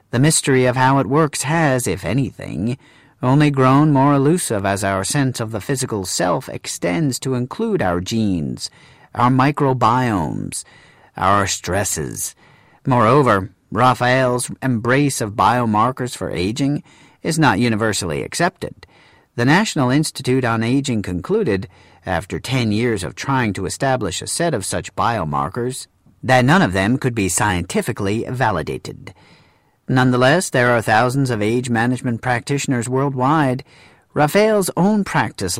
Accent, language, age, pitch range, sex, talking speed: American, English, 40-59, 105-140 Hz, male, 130 wpm